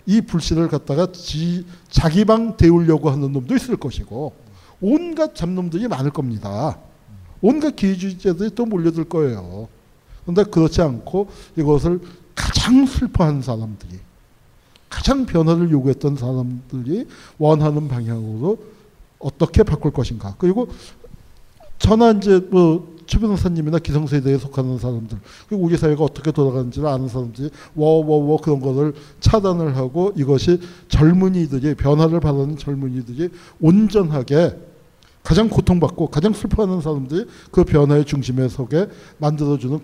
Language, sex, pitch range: Korean, male, 135-180 Hz